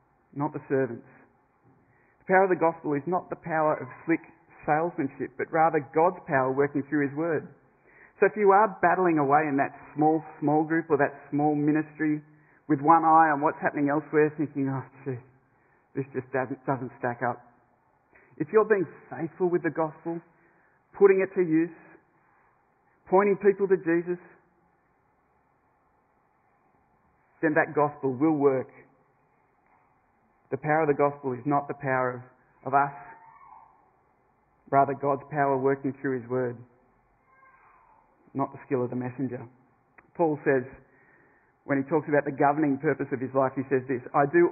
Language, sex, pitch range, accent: English, male, 130-160 Hz, Australian